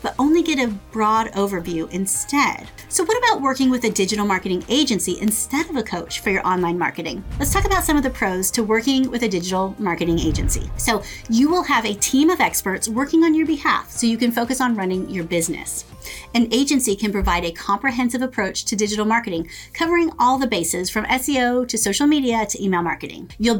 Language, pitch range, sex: English, 195-270 Hz, female